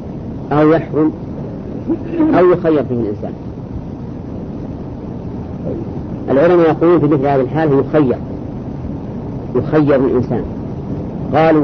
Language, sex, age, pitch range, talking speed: English, female, 50-69, 130-160 Hz, 80 wpm